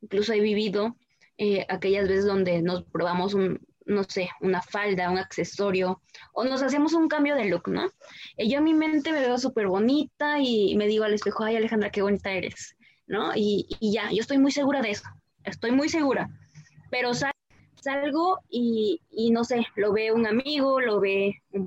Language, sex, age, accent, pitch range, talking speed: Spanish, female, 20-39, Mexican, 200-260 Hz, 195 wpm